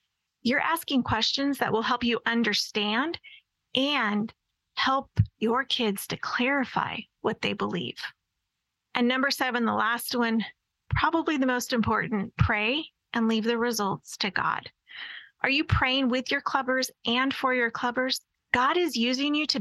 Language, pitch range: English, 220-265 Hz